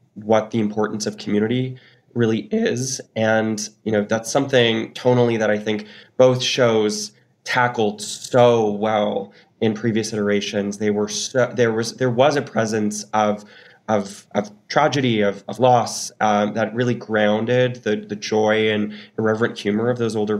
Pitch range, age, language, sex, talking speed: 105-120 Hz, 20-39, English, male, 155 wpm